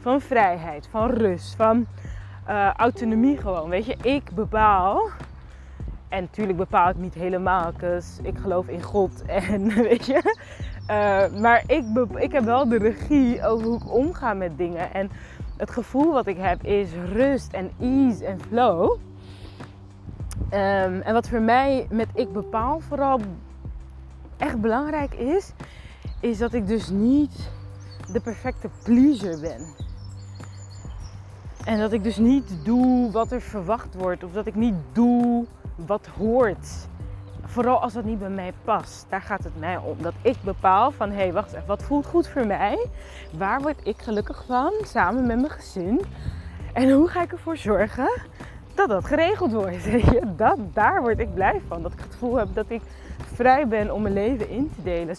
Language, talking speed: Dutch, 165 wpm